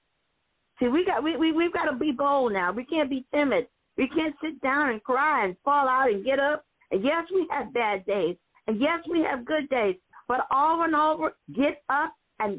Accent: American